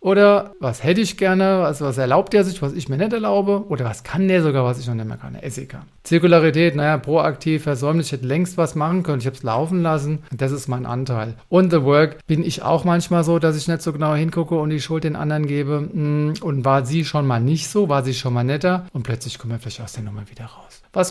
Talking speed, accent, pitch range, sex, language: 255 wpm, German, 130-170 Hz, male, German